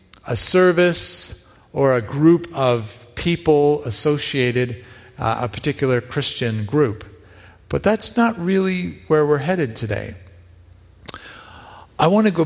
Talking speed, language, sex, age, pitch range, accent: 120 wpm, English, male, 40-59, 100-155 Hz, American